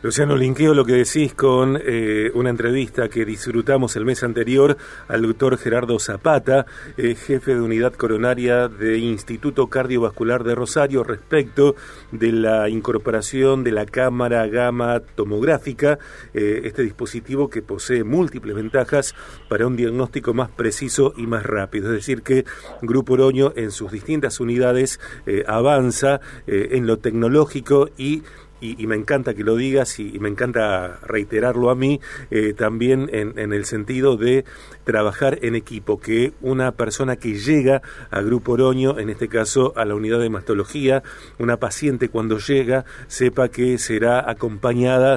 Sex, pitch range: male, 115-135 Hz